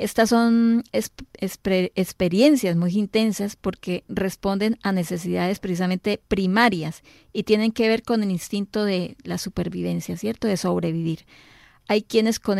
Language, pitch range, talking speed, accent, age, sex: Spanish, 185-220 Hz, 130 wpm, American, 40-59, female